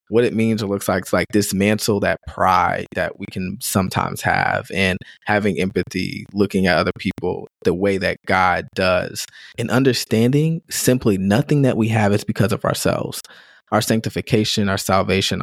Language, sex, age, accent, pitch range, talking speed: English, male, 20-39, American, 90-105 Hz, 165 wpm